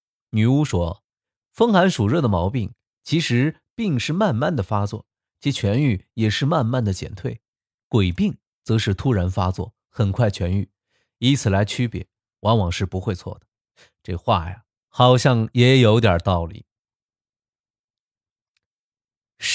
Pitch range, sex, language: 95-140 Hz, male, Chinese